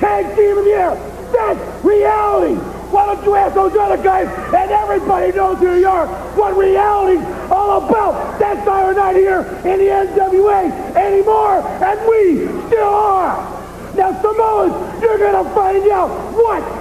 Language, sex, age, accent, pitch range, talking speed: English, male, 50-69, American, 305-385 Hz, 155 wpm